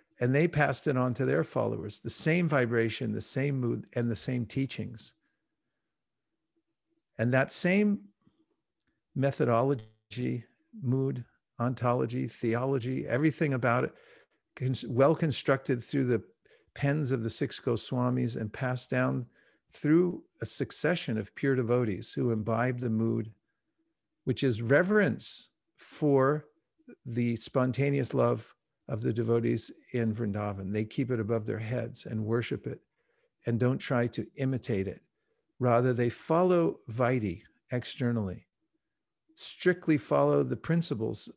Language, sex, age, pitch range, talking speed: English, male, 50-69, 115-140 Hz, 125 wpm